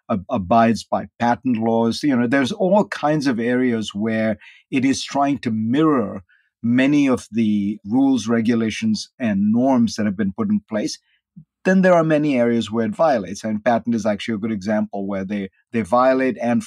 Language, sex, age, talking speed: English, male, 50-69, 180 wpm